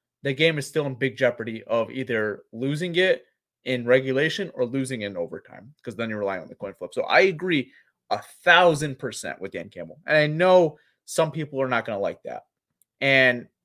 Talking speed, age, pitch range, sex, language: 205 wpm, 30-49, 120-175 Hz, male, English